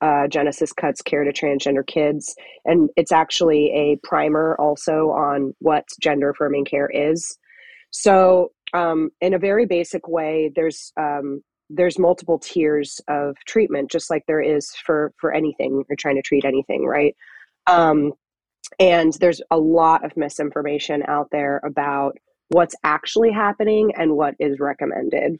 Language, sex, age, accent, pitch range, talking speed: English, female, 30-49, American, 145-175 Hz, 150 wpm